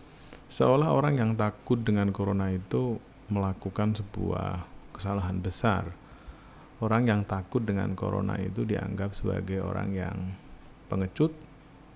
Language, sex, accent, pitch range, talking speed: Indonesian, male, native, 95-125 Hz, 110 wpm